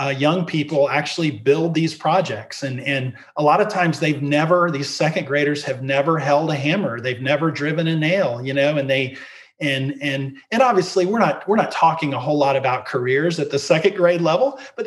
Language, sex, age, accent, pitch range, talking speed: English, male, 40-59, American, 135-155 Hz, 210 wpm